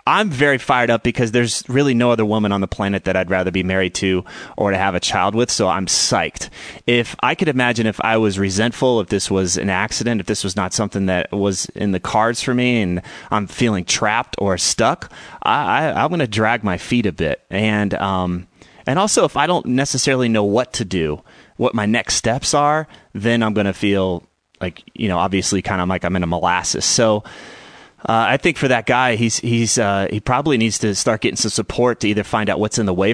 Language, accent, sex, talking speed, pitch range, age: English, American, male, 230 wpm, 95-120 Hz, 30-49